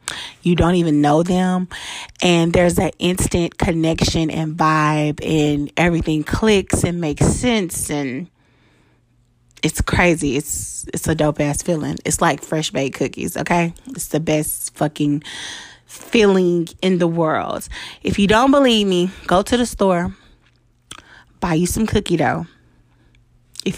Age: 20-39